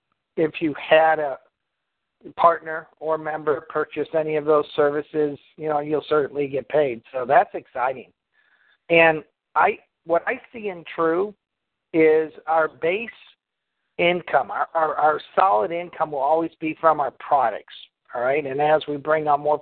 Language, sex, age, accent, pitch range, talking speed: English, male, 50-69, American, 150-170 Hz, 155 wpm